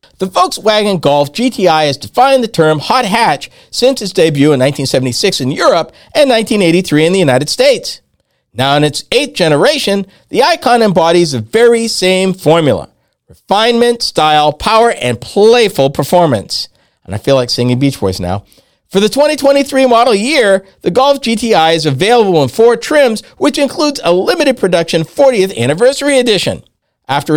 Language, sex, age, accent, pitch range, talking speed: English, male, 50-69, American, 150-240 Hz, 155 wpm